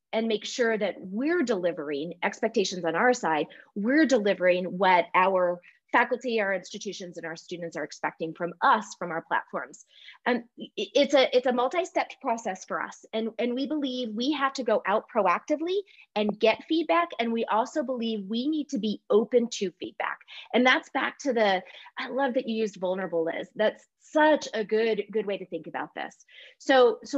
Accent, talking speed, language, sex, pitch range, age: American, 185 wpm, English, female, 195-255 Hz, 30-49